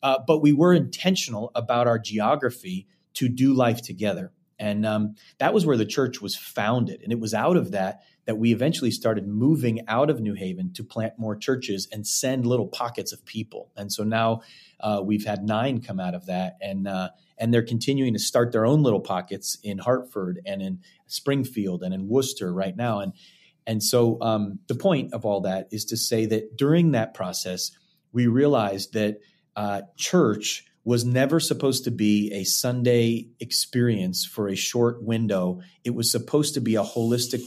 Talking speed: 190 wpm